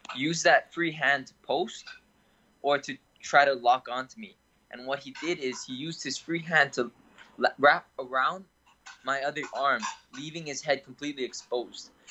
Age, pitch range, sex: 10-29, 125-160 Hz, male